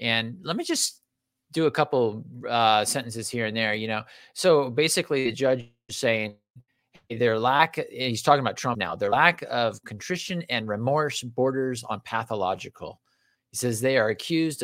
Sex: male